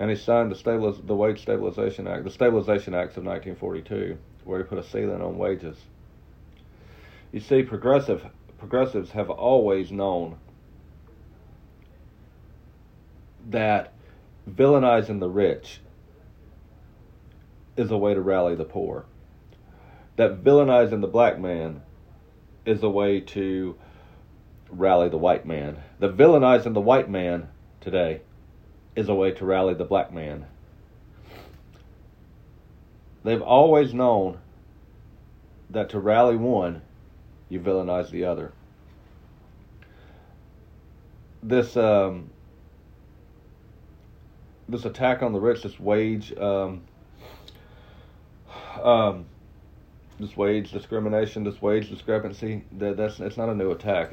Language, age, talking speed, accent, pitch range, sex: English, 40-59, 110 wpm, American, 90-110 Hz, male